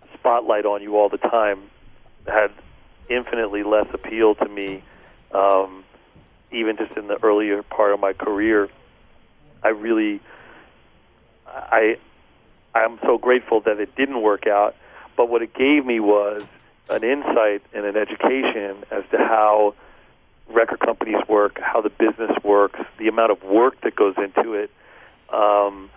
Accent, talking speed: American, 150 wpm